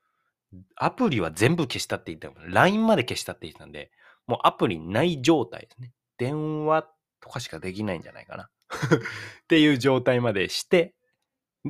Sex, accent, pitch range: male, native, 110-155 Hz